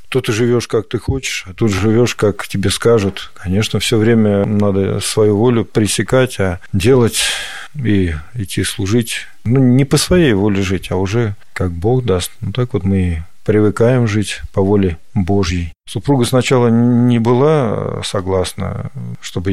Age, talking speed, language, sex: 50-69, 155 wpm, Russian, male